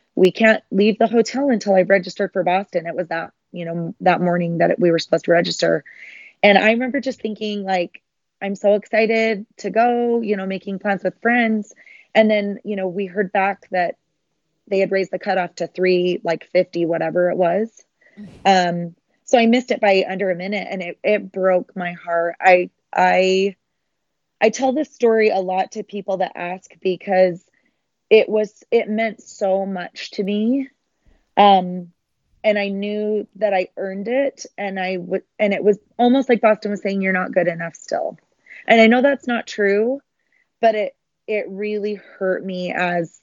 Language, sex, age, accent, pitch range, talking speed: English, female, 30-49, American, 180-215 Hz, 185 wpm